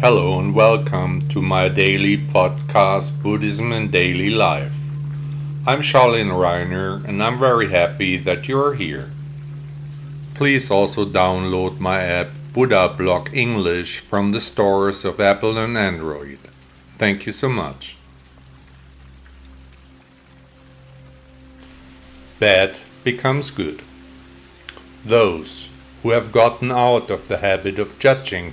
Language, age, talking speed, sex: English, 50-69, 110 wpm, male